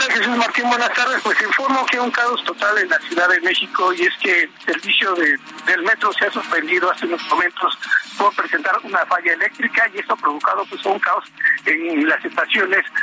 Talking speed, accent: 210 wpm, Mexican